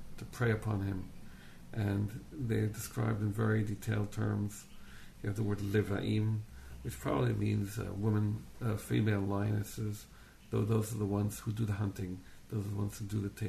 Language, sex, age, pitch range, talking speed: English, male, 50-69, 100-115 Hz, 180 wpm